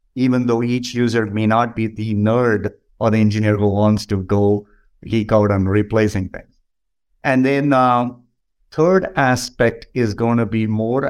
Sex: male